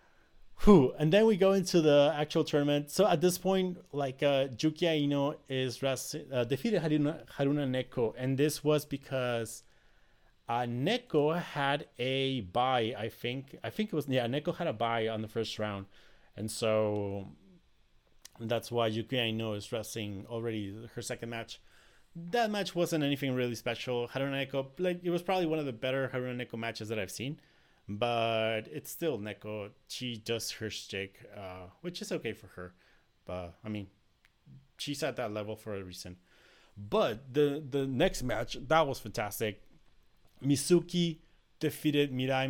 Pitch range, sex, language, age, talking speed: 115-150 Hz, male, English, 30-49, 160 wpm